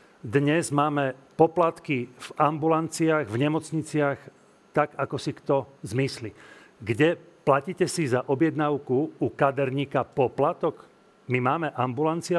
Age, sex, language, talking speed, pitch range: 40-59, male, Slovak, 110 wpm, 125-155 Hz